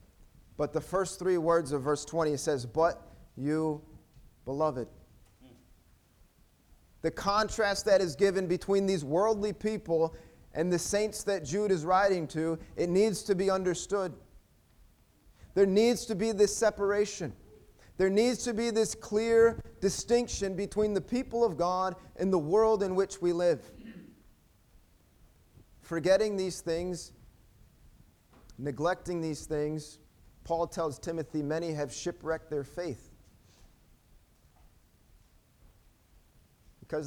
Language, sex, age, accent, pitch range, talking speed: English, male, 30-49, American, 155-210 Hz, 120 wpm